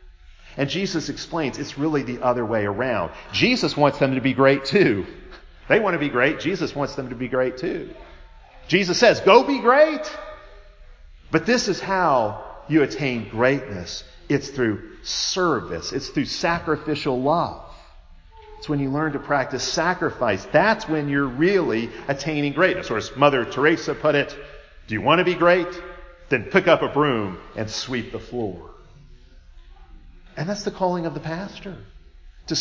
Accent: American